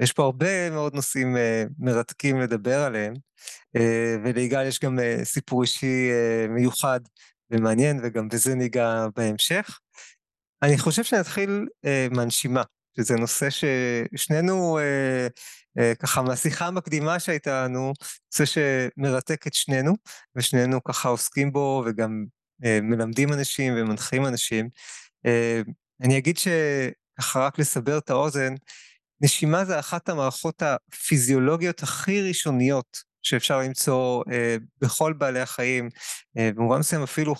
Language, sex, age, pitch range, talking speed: Hebrew, male, 20-39, 120-150 Hz, 110 wpm